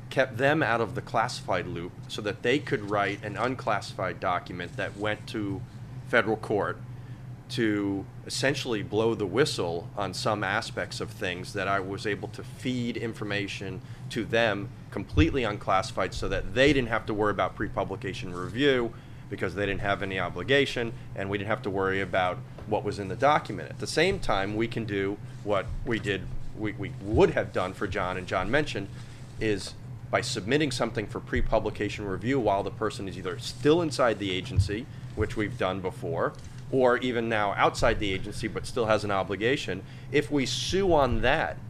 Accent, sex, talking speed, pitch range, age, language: American, male, 180 wpm, 105-130 Hz, 30-49, English